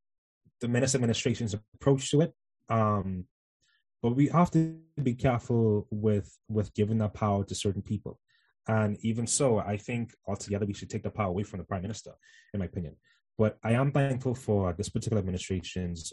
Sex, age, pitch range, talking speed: male, 20-39, 95-125 Hz, 180 wpm